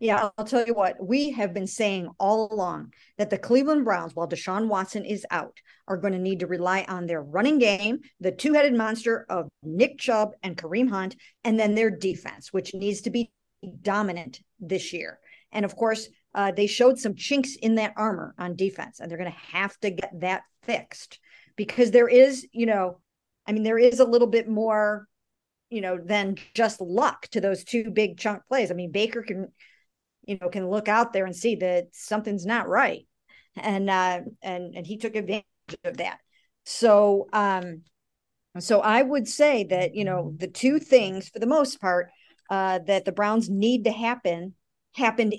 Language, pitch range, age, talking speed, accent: English, 185-235 Hz, 50-69, 190 wpm, American